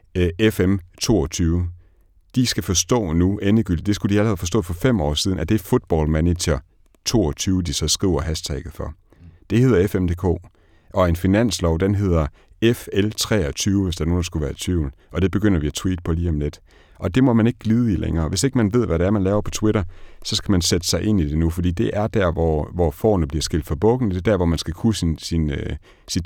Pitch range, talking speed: 85-105 Hz, 240 wpm